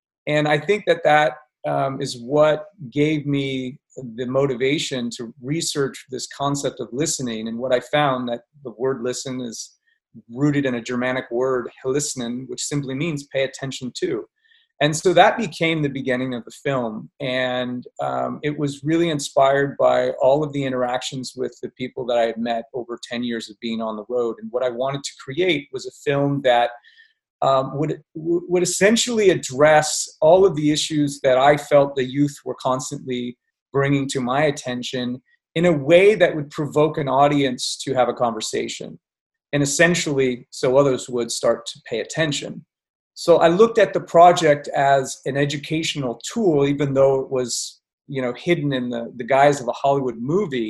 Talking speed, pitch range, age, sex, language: 180 wpm, 125-155 Hz, 30-49, male, English